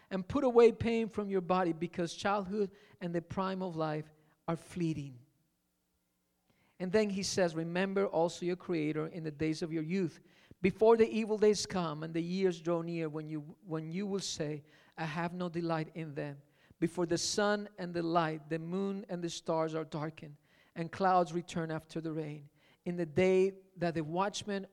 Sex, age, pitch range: male, 40-59, 155-200 Hz